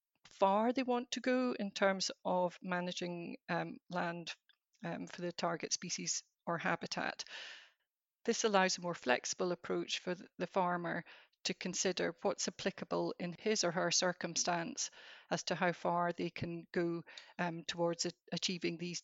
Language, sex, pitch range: English, female, 175-195 Hz